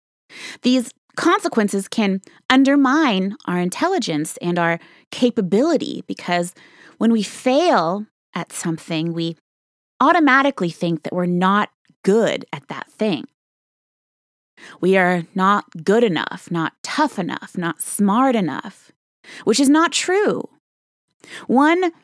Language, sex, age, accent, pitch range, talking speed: English, female, 20-39, American, 170-245 Hz, 110 wpm